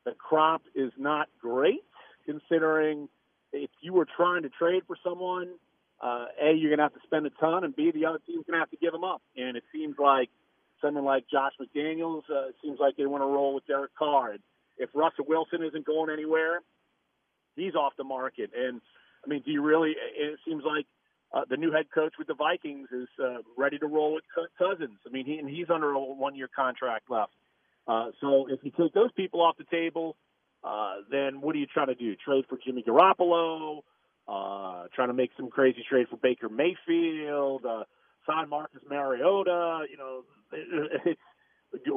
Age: 40-59